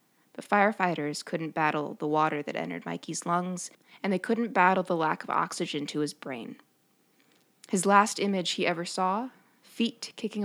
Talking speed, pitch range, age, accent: 165 wpm, 160-200 Hz, 20-39, American